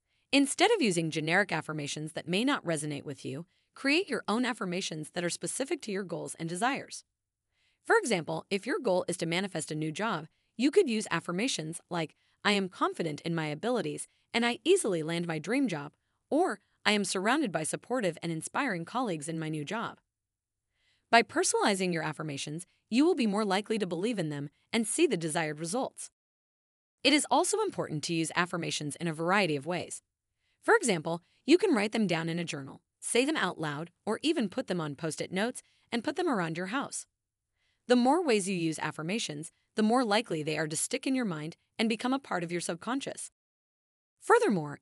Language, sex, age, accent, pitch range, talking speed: English, female, 30-49, American, 160-235 Hz, 195 wpm